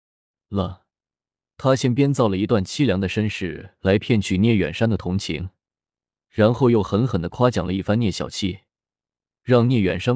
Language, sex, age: Chinese, male, 20-39